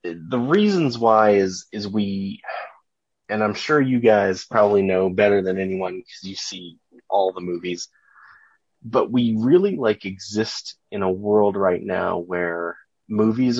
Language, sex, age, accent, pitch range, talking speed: English, male, 30-49, American, 95-115 Hz, 150 wpm